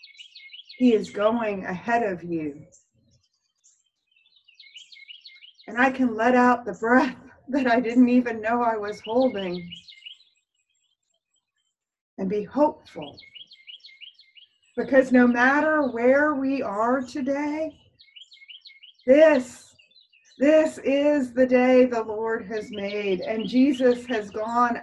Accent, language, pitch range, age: American, English, 210-260 Hz, 40-59